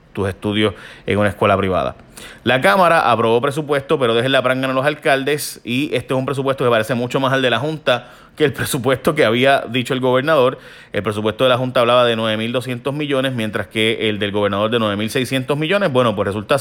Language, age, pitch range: Spanish, 30-49, 115-140 Hz